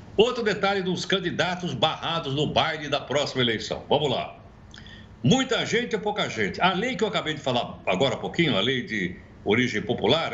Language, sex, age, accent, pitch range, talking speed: Portuguese, male, 60-79, Brazilian, 150-210 Hz, 185 wpm